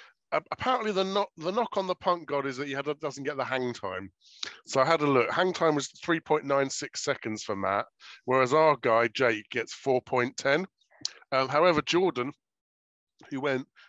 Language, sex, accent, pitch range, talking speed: English, male, British, 110-140 Hz, 165 wpm